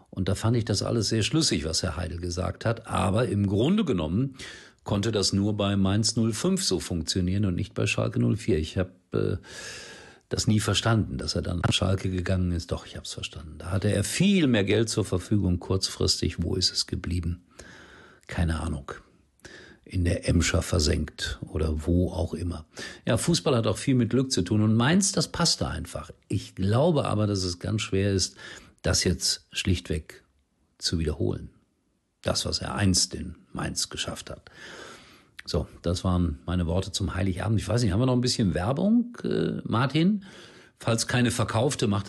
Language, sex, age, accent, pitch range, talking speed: German, male, 50-69, German, 90-115 Hz, 185 wpm